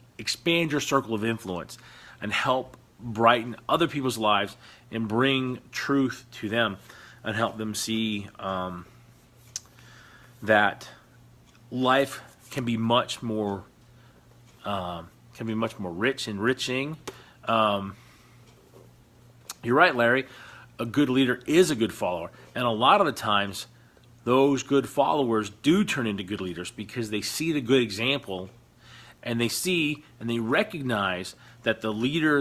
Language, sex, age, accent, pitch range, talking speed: English, male, 40-59, American, 110-130 Hz, 135 wpm